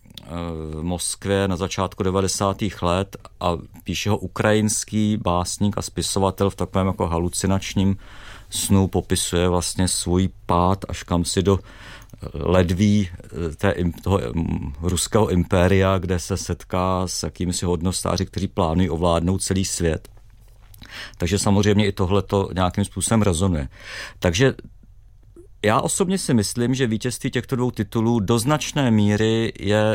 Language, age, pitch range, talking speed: Czech, 50-69, 95-115 Hz, 130 wpm